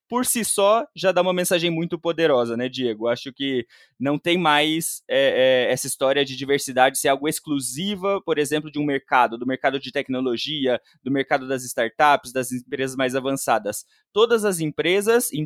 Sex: male